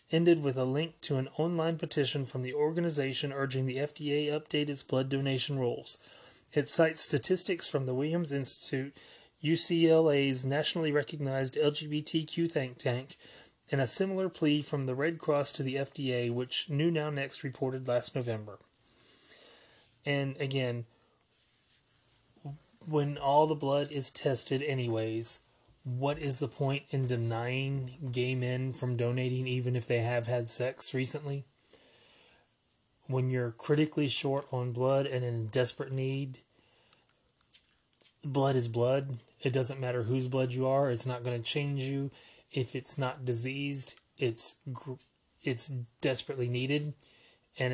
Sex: male